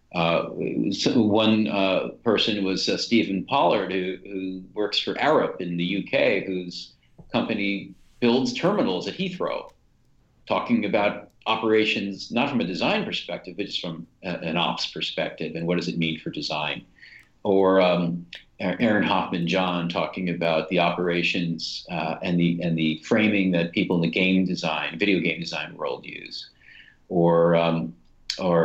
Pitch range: 85-105 Hz